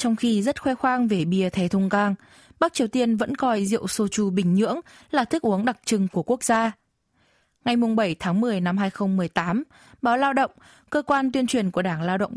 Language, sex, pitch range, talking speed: Vietnamese, female, 200-255 Hz, 215 wpm